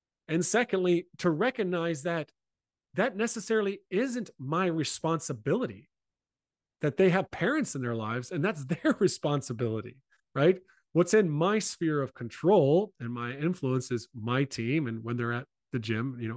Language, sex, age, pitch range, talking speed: English, male, 40-59, 125-180 Hz, 150 wpm